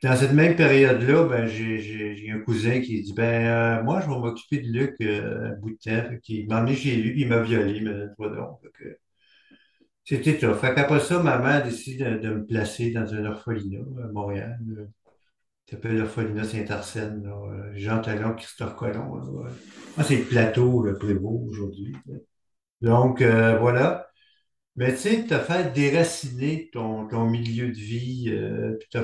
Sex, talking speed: male, 190 wpm